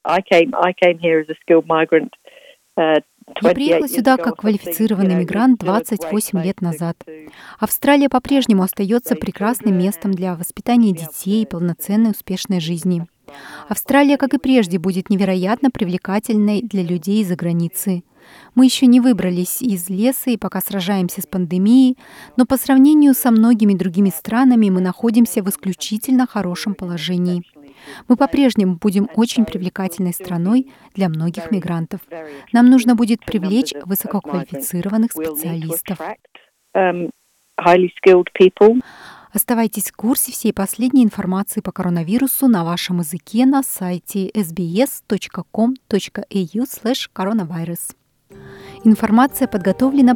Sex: female